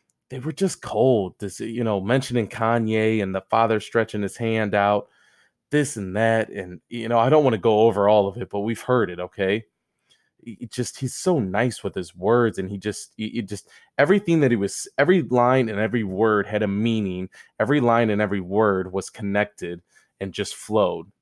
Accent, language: American, English